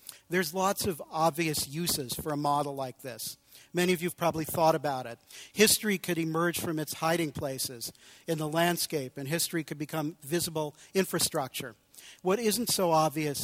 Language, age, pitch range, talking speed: English, 50-69, 145-170 Hz, 170 wpm